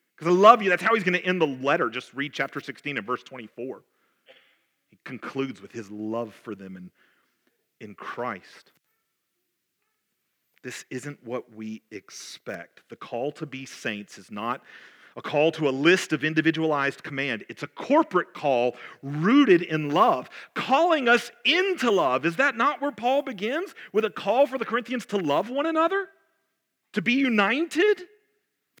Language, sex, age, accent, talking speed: English, male, 40-59, American, 165 wpm